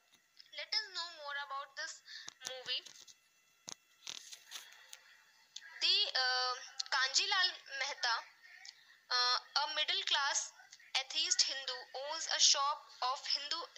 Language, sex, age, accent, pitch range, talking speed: English, female, 20-39, Indian, 265-340 Hz, 90 wpm